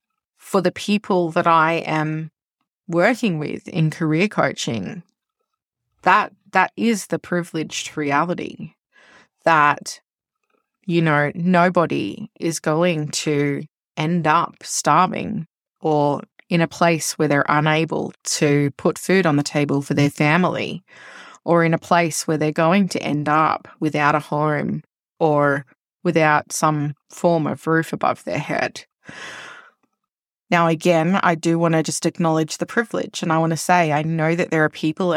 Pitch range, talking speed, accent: 155-180 Hz, 145 wpm, Australian